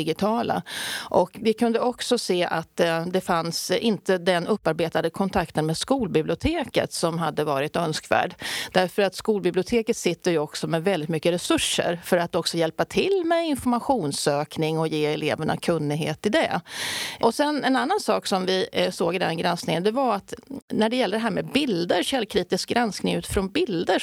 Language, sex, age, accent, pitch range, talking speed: English, female, 30-49, Swedish, 170-240 Hz, 165 wpm